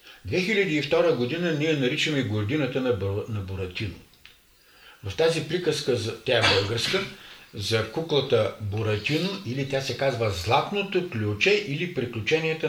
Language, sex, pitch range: Bulgarian, male, 110-155 Hz